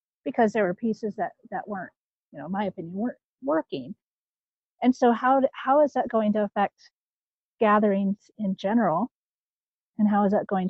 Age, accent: 40-59, American